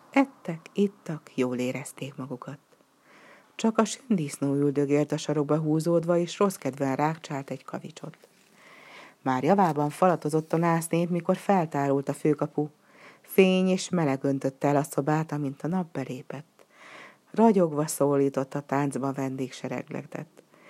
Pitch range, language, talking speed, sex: 140-185 Hz, Hungarian, 125 wpm, female